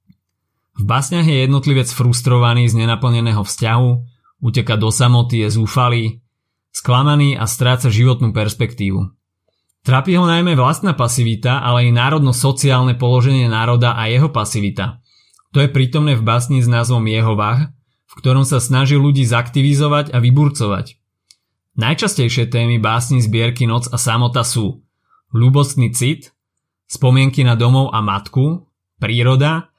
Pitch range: 115-135 Hz